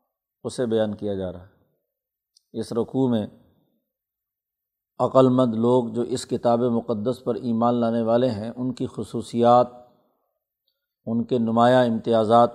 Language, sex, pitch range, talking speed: Urdu, male, 115-130 Hz, 135 wpm